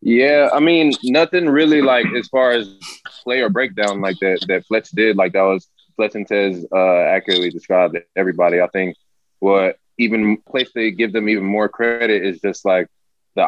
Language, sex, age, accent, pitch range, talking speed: English, male, 20-39, American, 95-105 Hz, 185 wpm